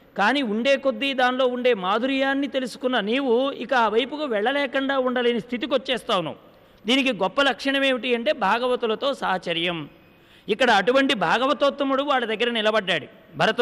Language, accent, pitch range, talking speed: English, Indian, 225-270 Hz, 190 wpm